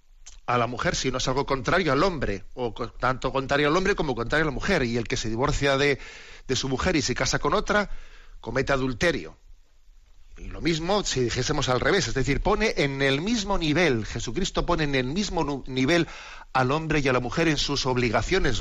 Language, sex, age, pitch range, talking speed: Spanish, male, 40-59, 115-145 Hz, 210 wpm